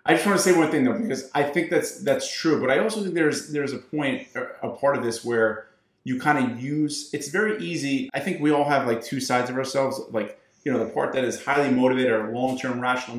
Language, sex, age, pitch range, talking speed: English, male, 30-49, 115-145 Hz, 255 wpm